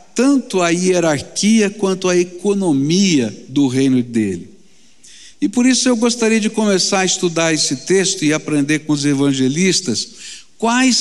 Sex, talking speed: male, 140 wpm